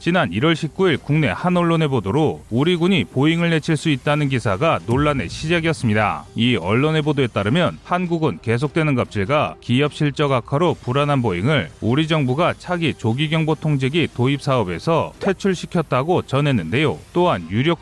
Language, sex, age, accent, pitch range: Korean, male, 30-49, native, 120-160 Hz